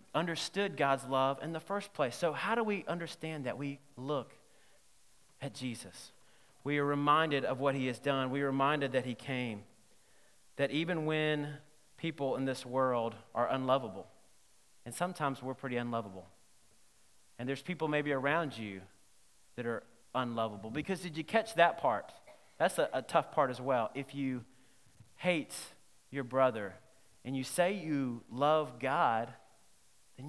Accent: American